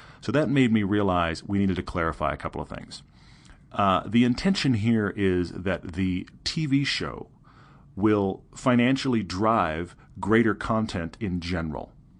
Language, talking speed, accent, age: English, 145 wpm, American, 40-59